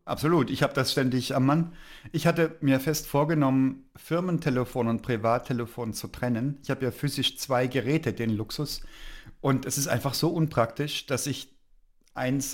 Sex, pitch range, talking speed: male, 120-140 Hz, 165 wpm